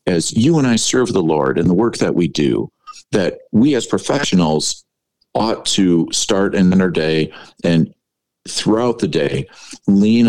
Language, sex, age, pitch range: English, male, 50-69, 85-110 Hz